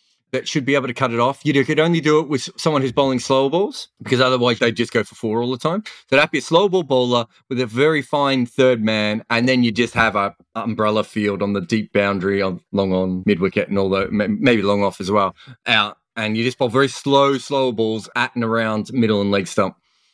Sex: male